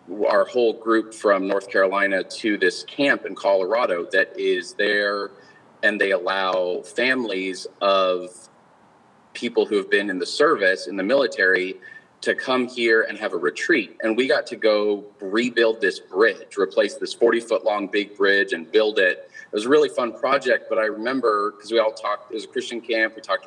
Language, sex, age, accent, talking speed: English, male, 30-49, American, 190 wpm